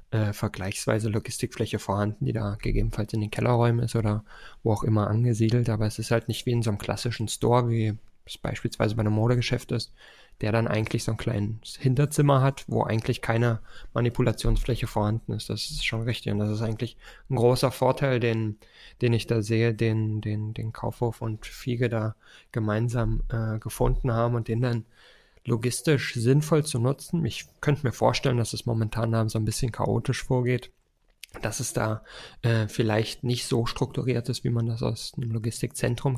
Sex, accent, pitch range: male, German, 110-125 Hz